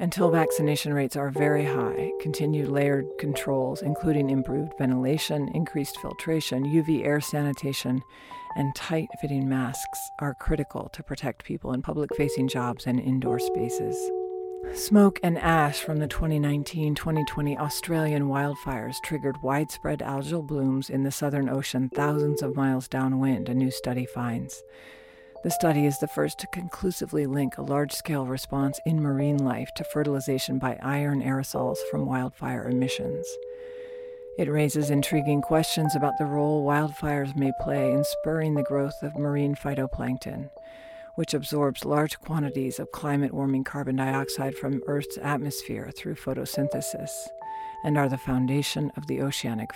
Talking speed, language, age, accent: 140 wpm, English, 50-69, American